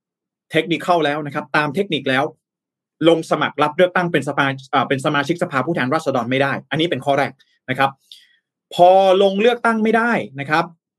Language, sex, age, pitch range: Thai, male, 20-39, 140-200 Hz